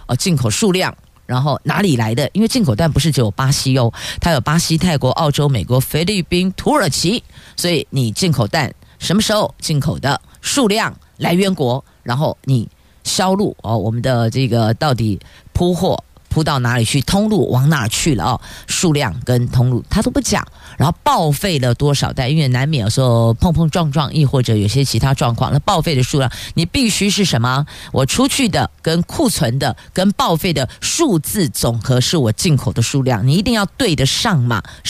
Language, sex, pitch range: Chinese, female, 130-195 Hz